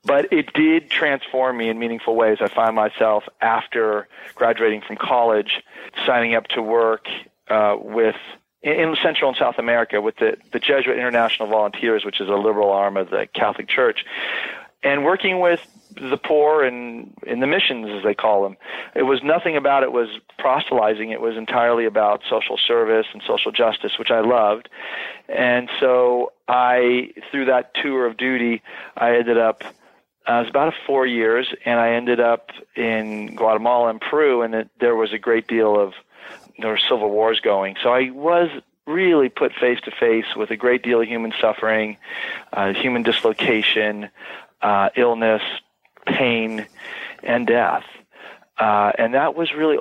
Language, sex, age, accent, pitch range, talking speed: English, male, 40-59, American, 110-125 Hz, 170 wpm